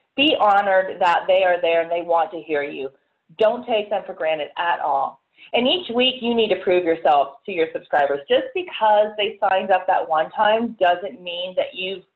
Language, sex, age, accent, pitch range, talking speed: English, female, 30-49, American, 200-255 Hz, 205 wpm